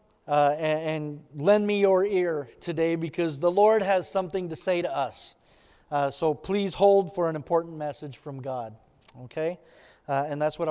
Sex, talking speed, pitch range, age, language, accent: male, 175 wpm, 165-240 Hz, 40-59, English, American